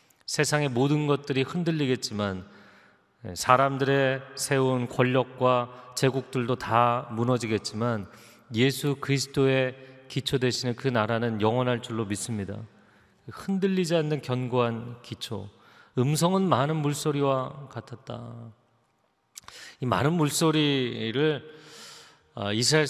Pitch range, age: 110-135 Hz, 40-59